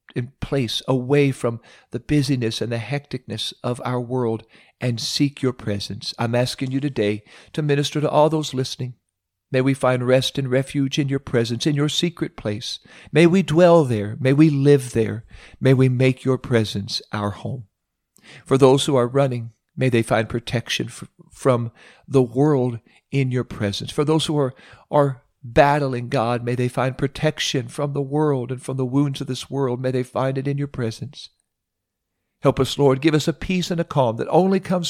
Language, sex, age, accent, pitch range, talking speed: English, male, 50-69, American, 115-145 Hz, 190 wpm